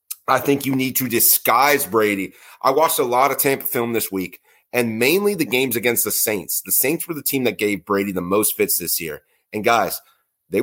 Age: 30-49